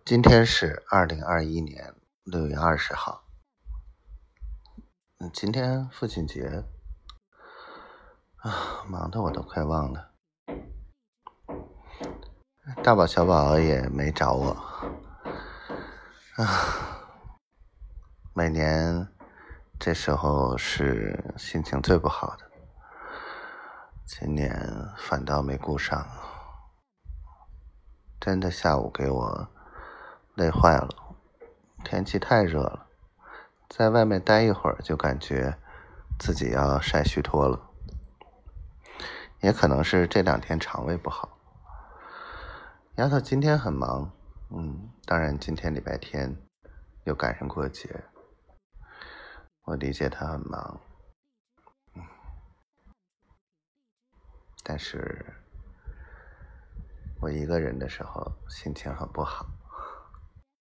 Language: Chinese